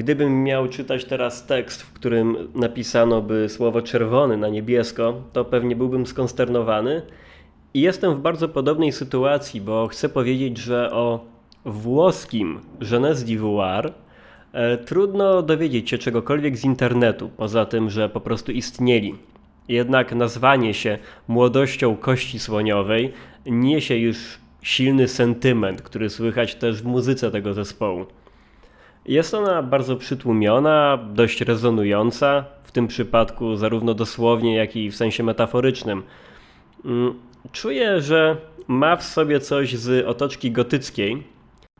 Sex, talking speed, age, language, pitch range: male, 120 wpm, 20-39, Polish, 110-130 Hz